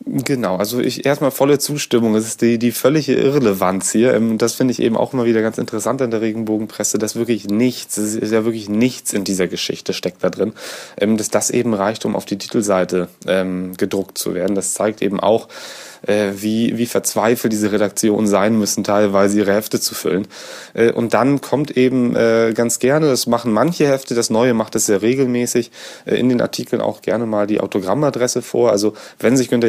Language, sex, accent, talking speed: German, male, German, 200 wpm